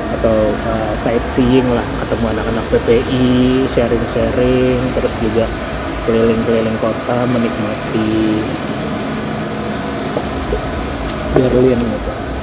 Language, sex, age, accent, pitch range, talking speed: Indonesian, male, 20-39, native, 115-130 Hz, 70 wpm